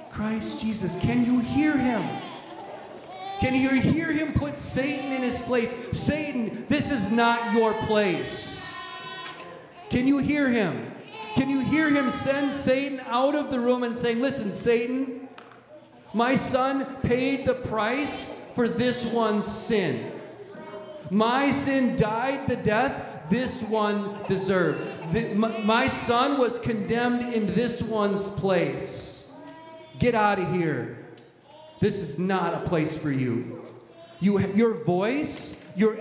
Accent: American